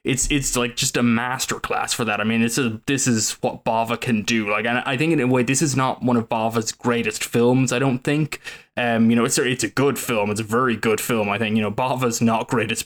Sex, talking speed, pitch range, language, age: male, 265 wpm, 110-125 Hz, English, 20-39